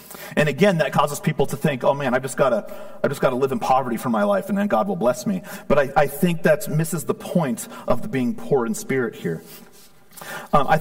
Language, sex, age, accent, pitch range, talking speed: English, male, 40-59, American, 160-205 Hz, 235 wpm